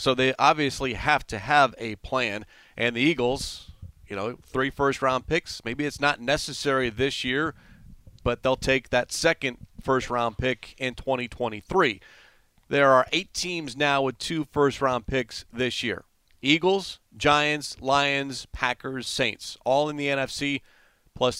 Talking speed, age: 145 wpm, 40-59